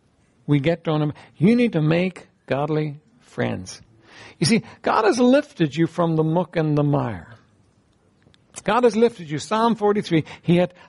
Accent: American